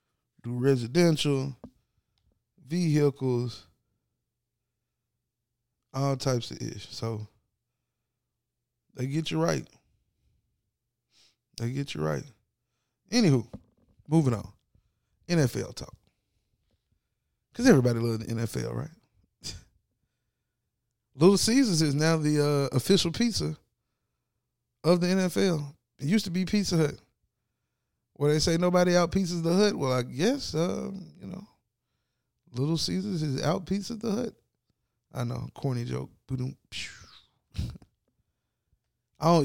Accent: American